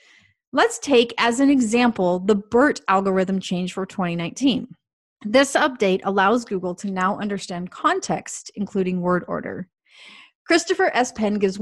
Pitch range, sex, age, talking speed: 195-265 Hz, female, 30-49, 135 wpm